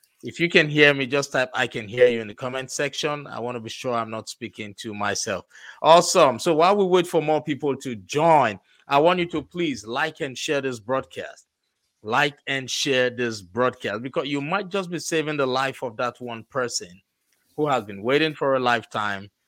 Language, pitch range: English, 115-150 Hz